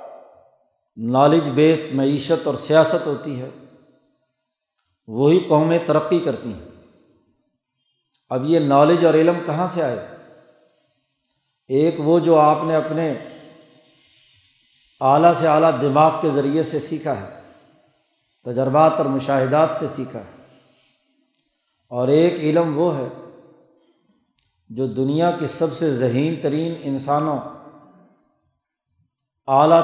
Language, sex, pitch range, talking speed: Urdu, male, 140-165 Hz, 110 wpm